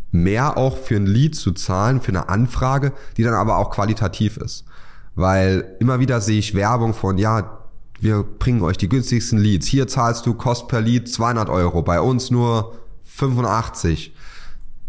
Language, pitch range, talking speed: German, 90-115 Hz, 170 wpm